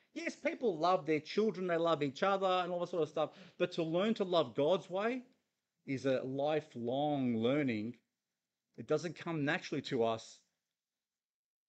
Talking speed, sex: 165 wpm, male